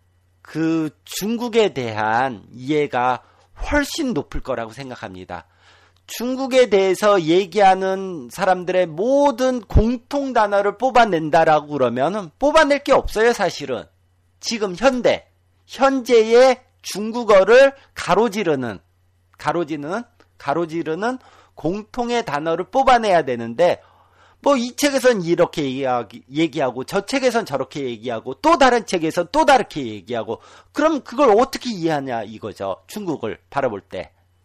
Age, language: 40-59, Korean